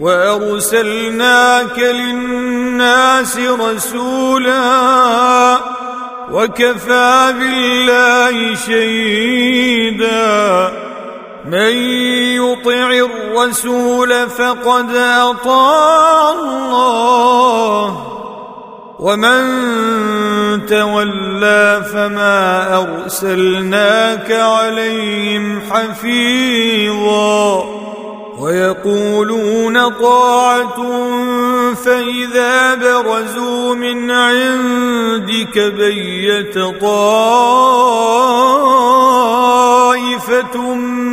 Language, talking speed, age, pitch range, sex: Arabic, 40 wpm, 40-59, 215-245 Hz, male